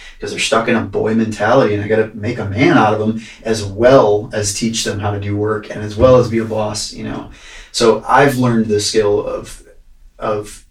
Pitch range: 105-125 Hz